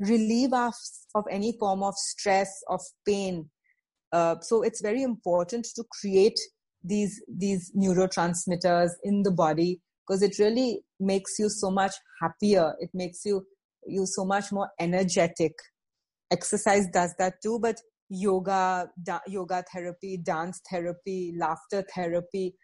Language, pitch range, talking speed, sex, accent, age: English, 175-205 Hz, 135 wpm, female, Indian, 30-49